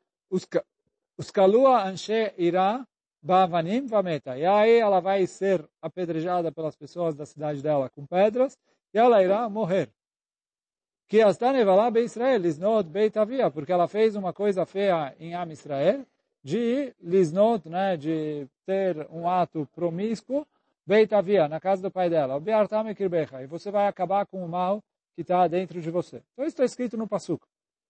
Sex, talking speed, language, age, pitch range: male, 120 wpm, Portuguese, 50-69, 155-215 Hz